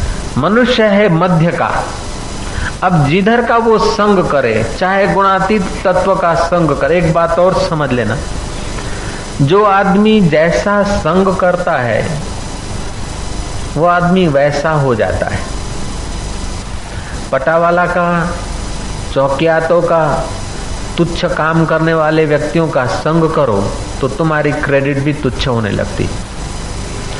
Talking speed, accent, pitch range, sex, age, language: 115 wpm, native, 130-180 Hz, male, 50-69, Hindi